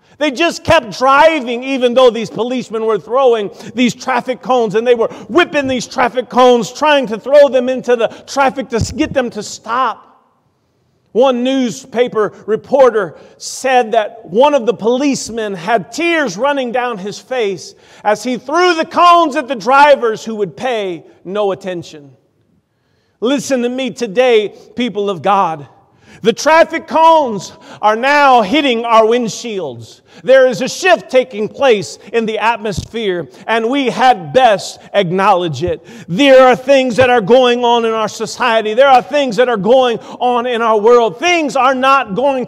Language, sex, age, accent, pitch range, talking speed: English, male, 40-59, American, 215-270 Hz, 160 wpm